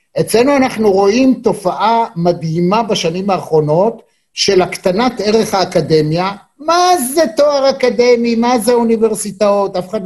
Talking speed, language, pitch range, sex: 120 wpm, Hebrew, 175-230 Hz, male